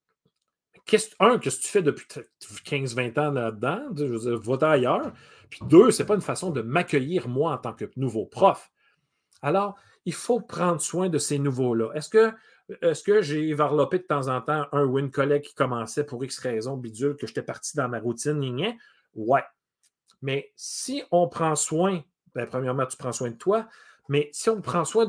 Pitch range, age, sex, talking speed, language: 125-175 Hz, 40-59, male, 195 wpm, French